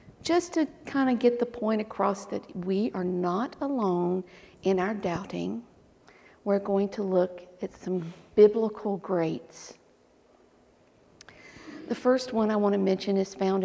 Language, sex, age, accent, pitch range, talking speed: English, female, 50-69, American, 195-245 Hz, 145 wpm